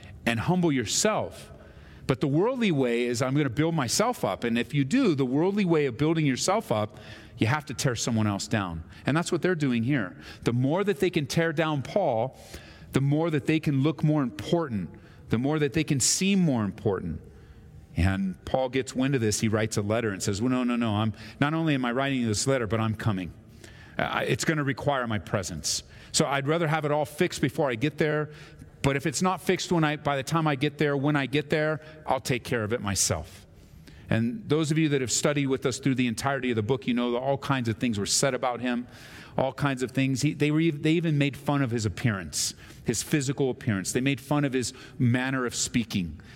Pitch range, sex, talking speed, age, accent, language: 110-150 Hz, male, 235 wpm, 40-59, American, English